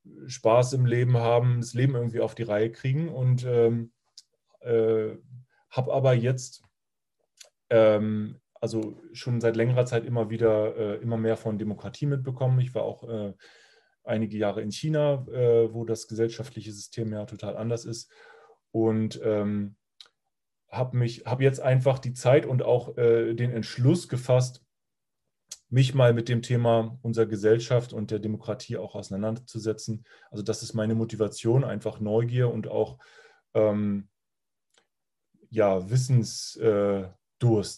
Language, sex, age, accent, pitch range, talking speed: German, male, 30-49, German, 110-125 Hz, 140 wpm